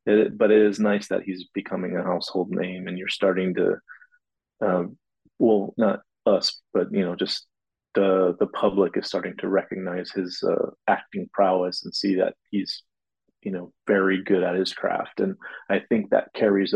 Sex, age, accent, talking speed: male, 30-49, American, 180 wpm